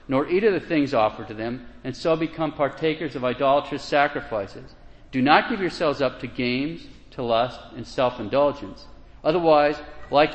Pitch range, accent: 115-155 Hz, American